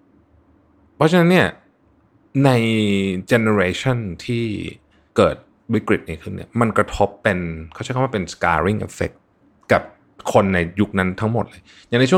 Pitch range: 85-110 Hz